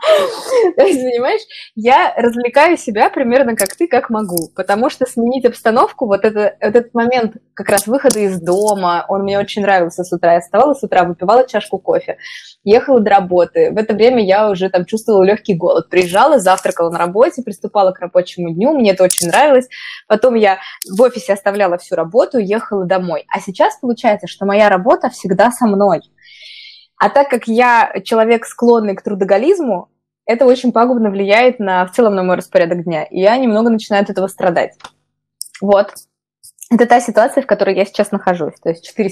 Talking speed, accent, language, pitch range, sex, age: 180 wpm, native, Russian, 185-245 Hz, female, 20-39